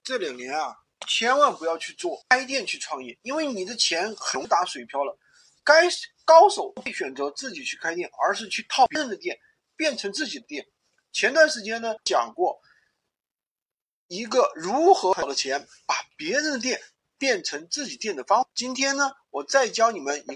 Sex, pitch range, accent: male, 205-290 Hz, native